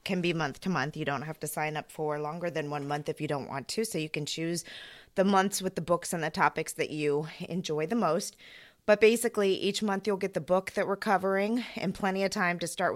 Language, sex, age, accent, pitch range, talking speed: English, female, 20-39, American, 150-185 Hz, 255 wpm